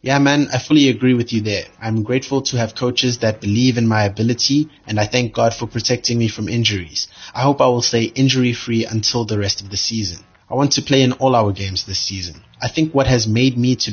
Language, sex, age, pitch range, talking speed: English, male, 20-39, 105-125 Hz, 240 wpm